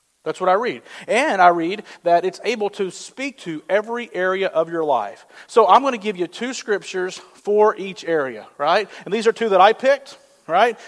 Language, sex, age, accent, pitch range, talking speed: English, male, 40-59, American, 160-220 Hz, 210 wpm